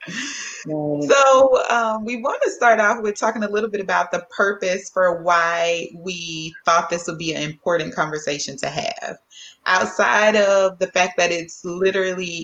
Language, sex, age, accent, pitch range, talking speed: English, female, 30-49, American, 165-195 Hz, 165 wpm